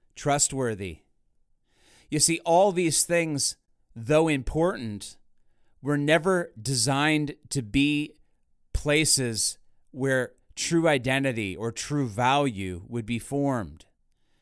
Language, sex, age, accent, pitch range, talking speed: English, male, 30-49, American, 120-150 Hz, 95 wpm